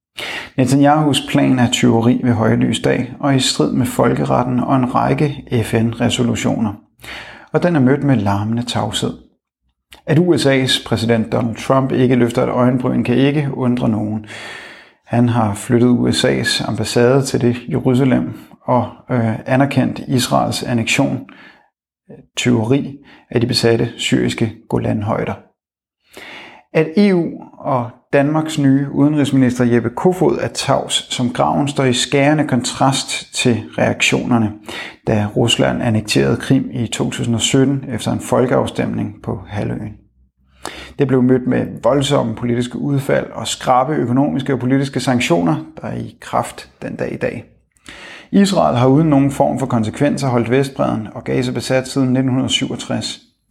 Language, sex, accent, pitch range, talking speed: Danish, male, native, 115-135 Hz, 130 wpm